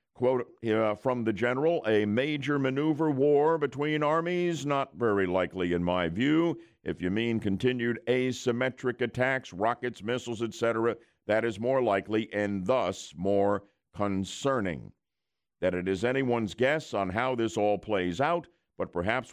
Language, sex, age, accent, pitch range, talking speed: English, male, 50-69, American, 95-120 Hz, 145 wpm